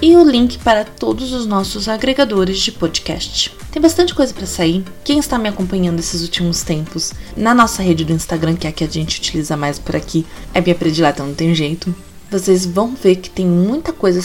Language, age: Portuguese, 20-39